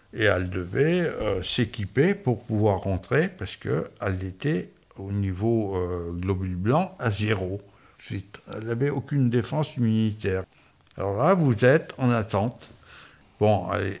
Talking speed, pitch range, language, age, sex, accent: 140 wpm, 100-130 Hz, French, 60-79, male, French